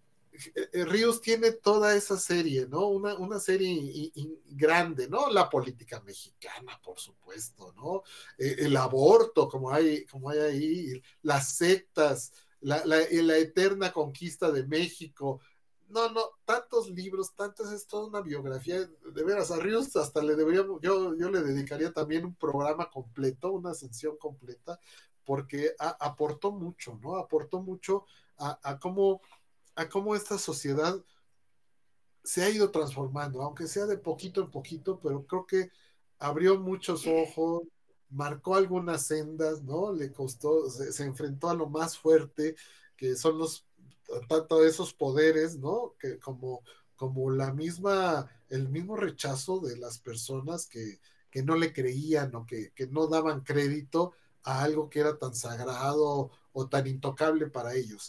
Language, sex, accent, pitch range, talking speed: Spanish, male, Mexican, 140-185 Hz, 145 wpm